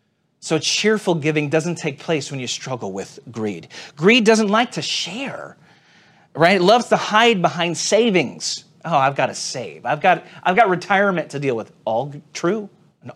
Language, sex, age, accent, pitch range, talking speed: English, male, 40-59, American, 155-185 Hz, 175 wpm